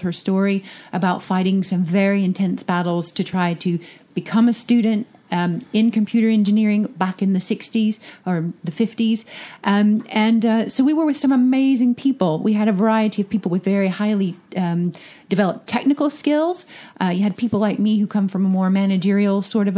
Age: 40-59